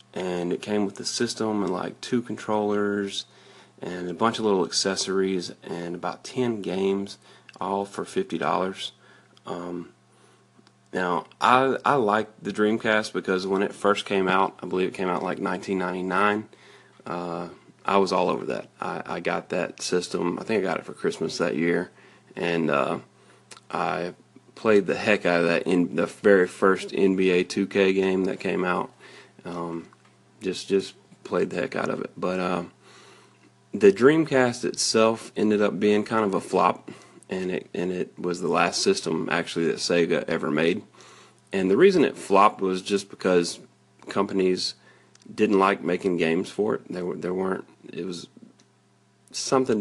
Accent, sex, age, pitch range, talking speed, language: American, male, 30-49, 90-105 Hz, 165 wpm, English